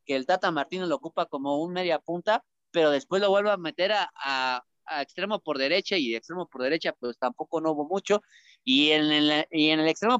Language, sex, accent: Spanish, male, Mexican